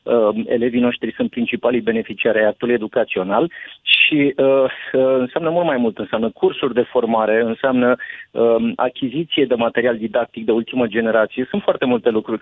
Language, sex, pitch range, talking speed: Romanian, male, 120-145 Hz, 150 wpm